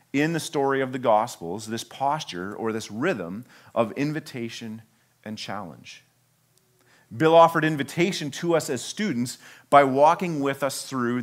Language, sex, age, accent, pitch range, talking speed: English, male, 40-59, American, 115-150 Hz, 145 wpm